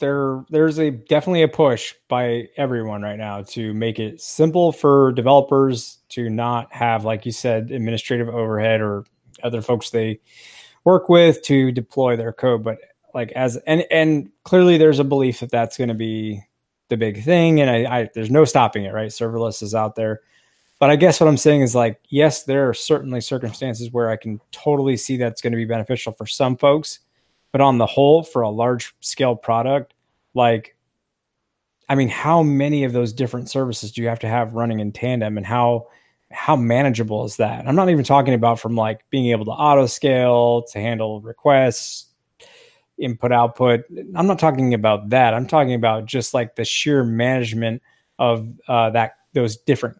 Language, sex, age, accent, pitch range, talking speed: English, male, 20-39, American, 115-140 Hz, 185 wpm